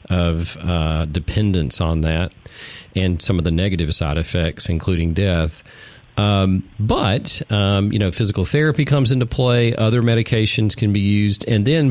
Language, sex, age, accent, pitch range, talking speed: English, male, 40-59, American, 90-110 Hz, 155 wpm